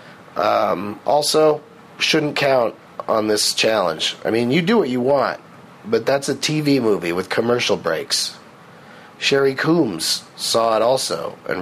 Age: 40-59